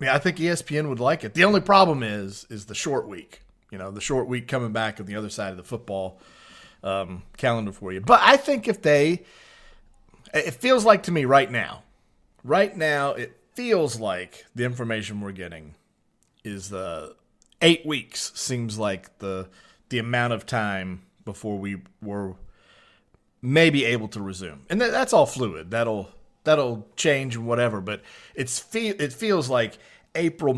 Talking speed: 175 wpm